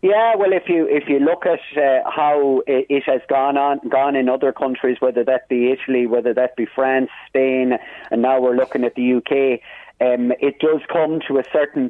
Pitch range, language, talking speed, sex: 125-145 Hz, English, 205 wpm, male